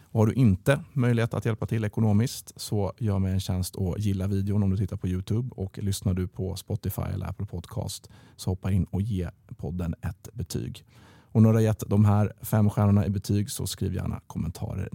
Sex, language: male, Swedish